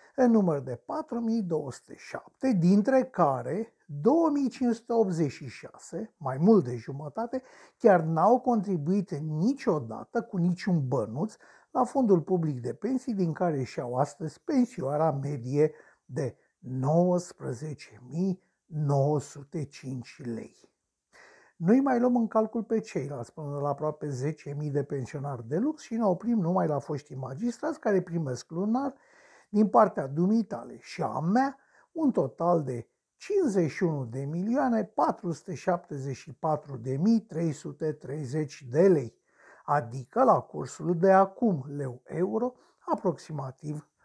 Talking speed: 115 wpm